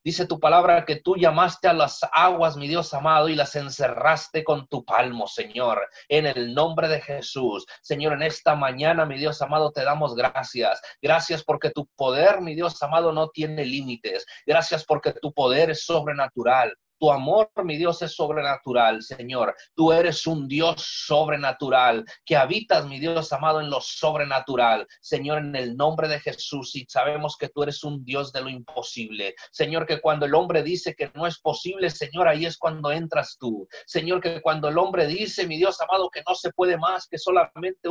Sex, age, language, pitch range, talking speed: male, 30-49, Spanish, 140-170 Hz, 185 wpm